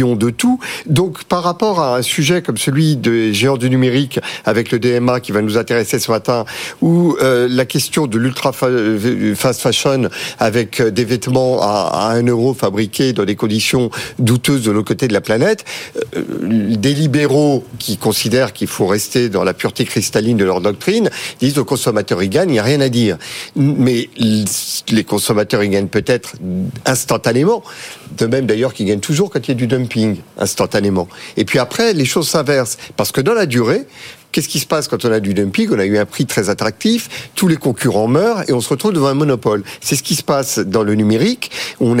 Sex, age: male, 50-69